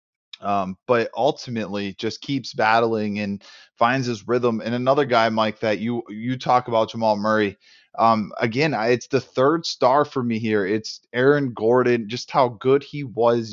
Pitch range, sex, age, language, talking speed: 110-130 Hz, male, 20-39, English, 175 wpm